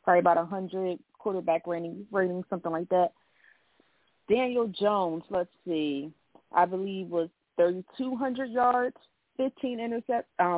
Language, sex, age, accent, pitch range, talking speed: English, female, 30-49, American, 160-205 Hz, 130 wpm